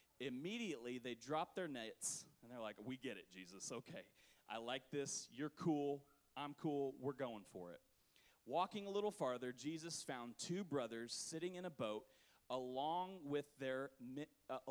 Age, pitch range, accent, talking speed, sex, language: 30-49, 120-160 Hz, American, 165 wpm, male, English